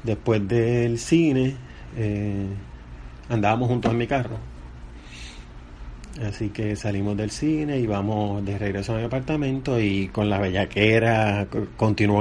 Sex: male